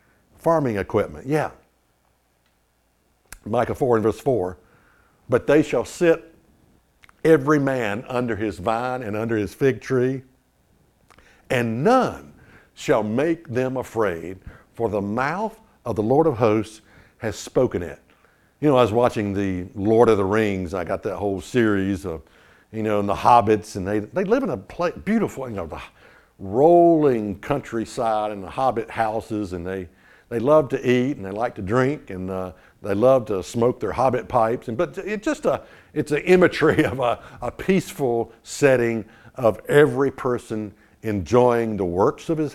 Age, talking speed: 60-79, 165 wpm